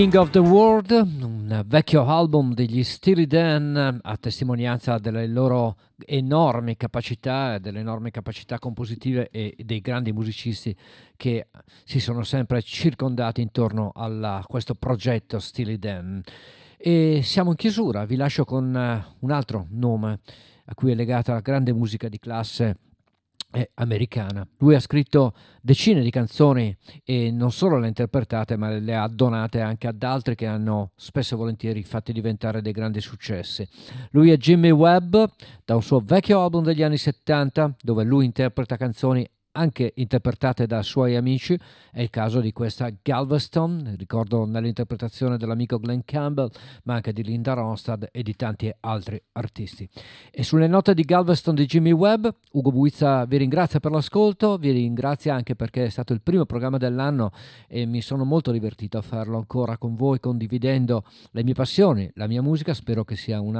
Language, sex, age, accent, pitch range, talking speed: Italian, male, 50-69, native, 115-140 Hz, 160 wpm